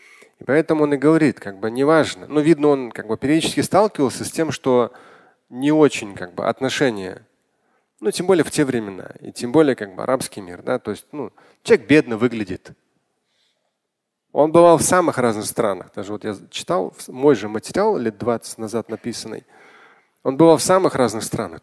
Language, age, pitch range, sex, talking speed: Russian, 30-49, 115-160 Hz, male, 185 wpm